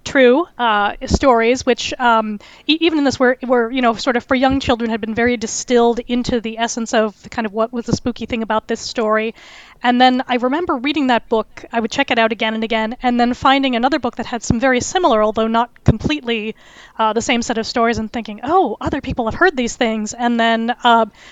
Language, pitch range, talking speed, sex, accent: English, 230-265 Hz, 230 wpm, female, American